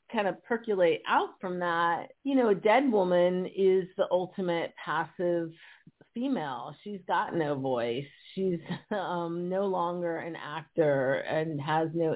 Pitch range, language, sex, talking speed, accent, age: 155-195 Hz, English, female, 145 wpm, American, 40-59